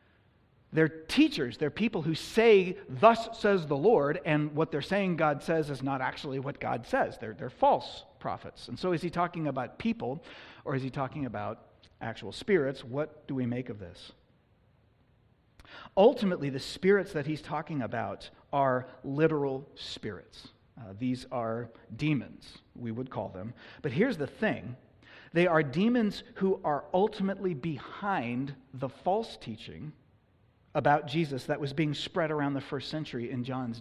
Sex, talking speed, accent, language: male, 160 wpm, American, English